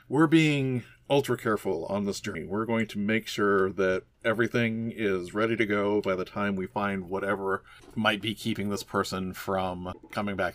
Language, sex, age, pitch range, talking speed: English, male, 40-59, 95-120 Hz, 180 wpm